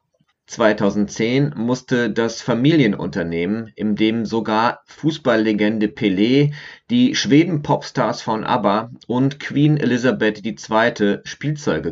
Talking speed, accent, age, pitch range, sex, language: 90 wpm, German, 30-49, 105-145 Hz, male, German